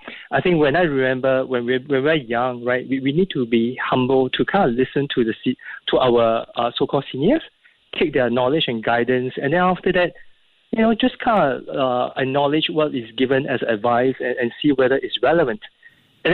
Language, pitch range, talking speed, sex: English, 125-170 Hz, 210 wpm, male